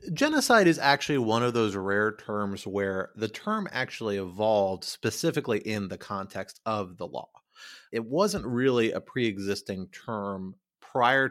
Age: 30-49